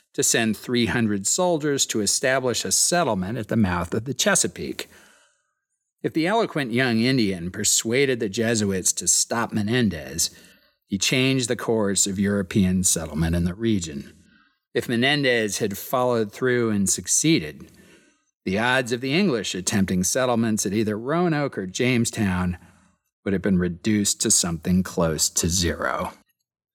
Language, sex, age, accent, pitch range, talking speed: English, male, 40-59, American, 95-130 Hz, 140 wpm